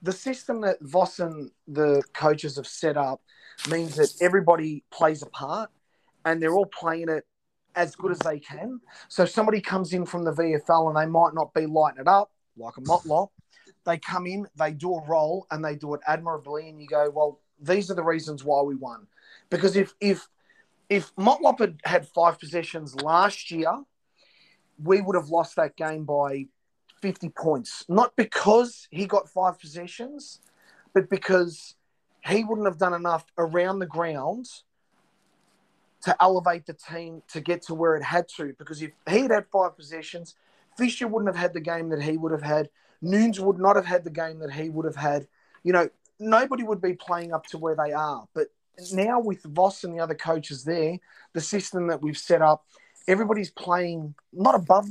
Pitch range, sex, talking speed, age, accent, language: 155-195 Hz, male, 190 wpm, 30-49, Australian, English